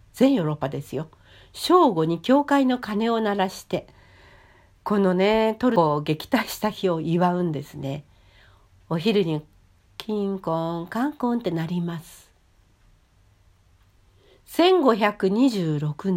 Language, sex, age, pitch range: Japanese, female, 60-79, 130-215 Hz